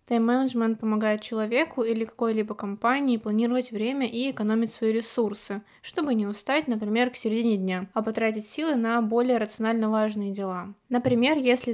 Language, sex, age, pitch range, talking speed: Russian, female, 20-39, 210-245 Hz, 150 wpm